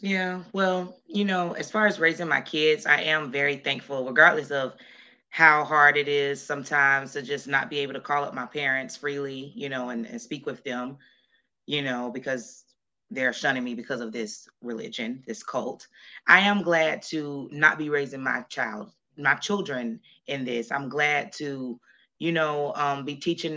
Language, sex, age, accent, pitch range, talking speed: English, female, 20-39, American, 140-165 Hz, 185 wpm